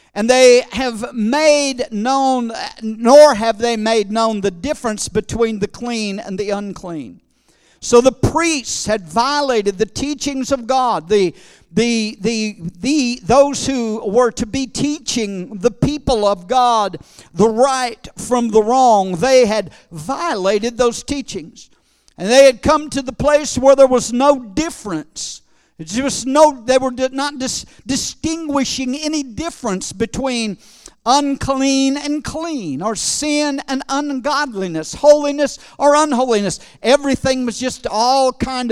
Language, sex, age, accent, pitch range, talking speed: English, male, 50-69, American, 225-280 Hz, 135 wpm